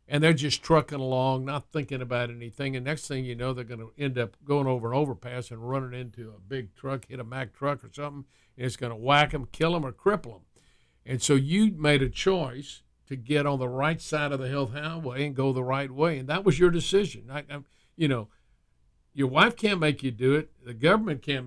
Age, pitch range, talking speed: 50-69, 125-155 Hz, 235 wpm